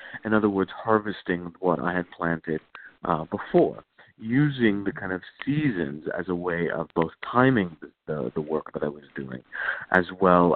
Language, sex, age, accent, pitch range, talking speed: English, male, 50-69, American, 90-115 Hz, 175 wpm